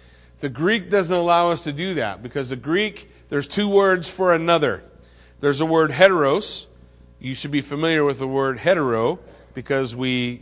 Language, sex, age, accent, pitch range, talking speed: English, male, 40-59, American, 115-175 Hz, 180 wpm